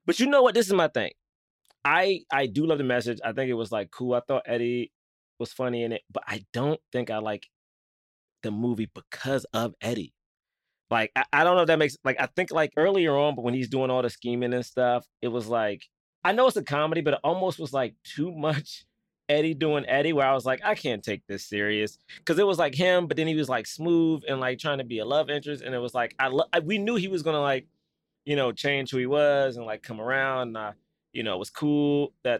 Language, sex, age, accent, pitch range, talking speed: English, male, 20-39, American, 125-155 Hz, 255 wpm